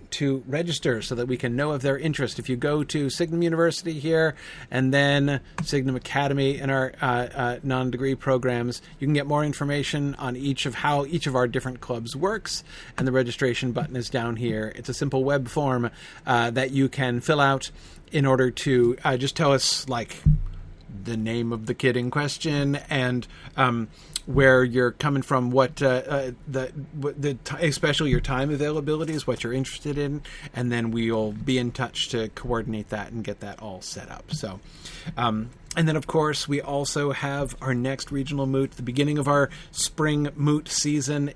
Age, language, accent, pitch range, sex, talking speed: 40-59, English, American, 125-145 Hz, male, 190 wpm